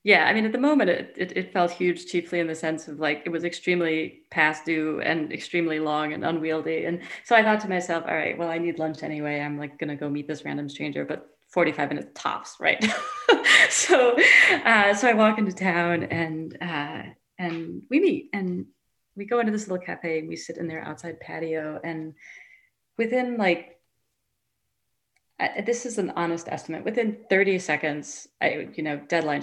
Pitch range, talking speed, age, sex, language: 155-205 Hz, 195 wpm, 30-49, female, English